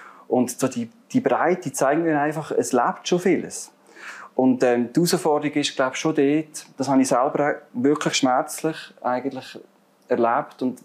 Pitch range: 125-170 Hz